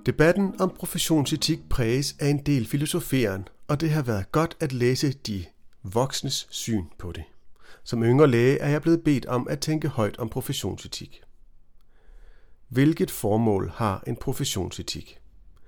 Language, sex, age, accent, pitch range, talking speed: Danish, male, 40-59, native, 110-150 Hz, 145 wpm